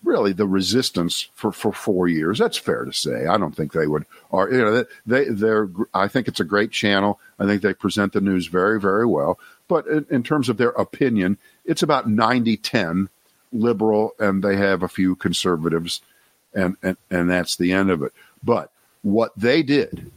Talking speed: 195 wpm